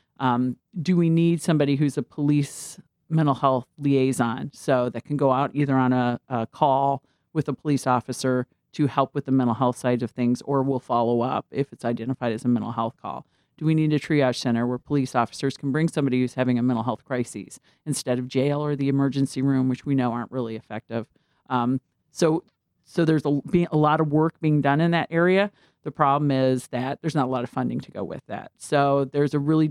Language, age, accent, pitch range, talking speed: English, 40-59, American, 125-150 Hz, 220 wpm